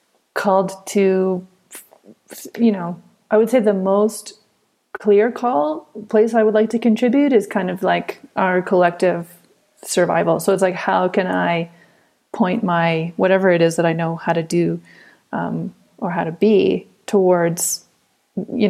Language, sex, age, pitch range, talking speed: English, female, 30-49, 180-215 Hz, 155 wpm